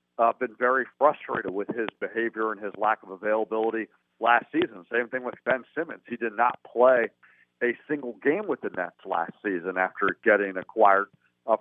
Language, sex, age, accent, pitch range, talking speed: English, male, 50-69, American, 110-125 Hz, 180 wpm